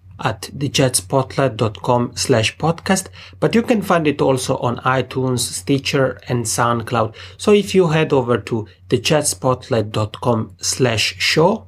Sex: male